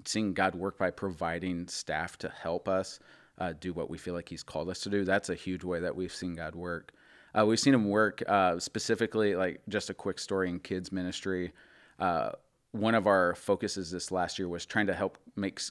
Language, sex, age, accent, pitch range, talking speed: English, male, 30-49, American, 90-110 Hz, 220 wpm